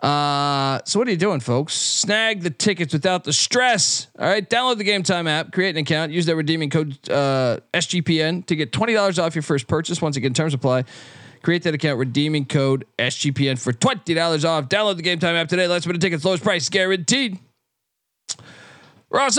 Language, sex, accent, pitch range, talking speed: English, male, American, 145-180 Hz, 195 wpm